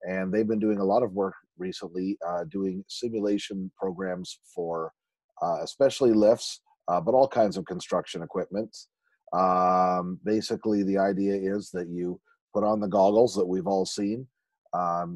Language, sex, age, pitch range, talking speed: English, male, 40-59, 95-110 Hz, 160 wpm